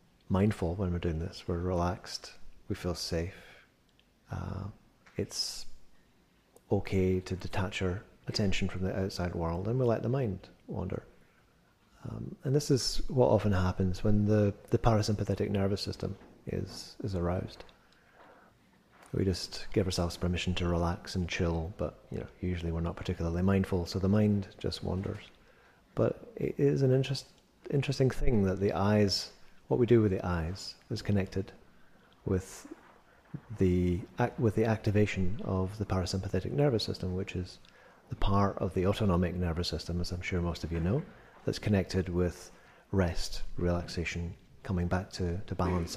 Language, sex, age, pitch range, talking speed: English, male, 30-49, 90-105 Hz, 155 wpm